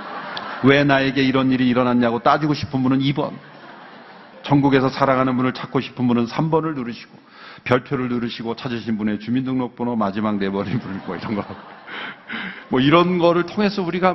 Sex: male